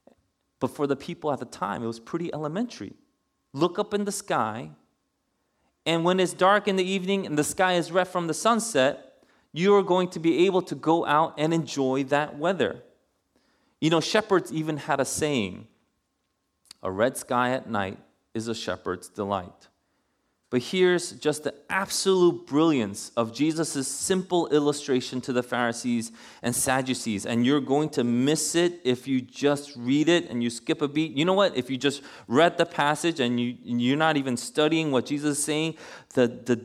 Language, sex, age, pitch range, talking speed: English, male, 30-49, 115-160 Hz, 185 wpm